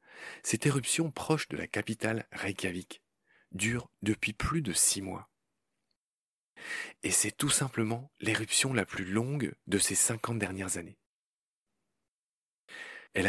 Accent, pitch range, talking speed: French, 95-120 Hz, 120 wpm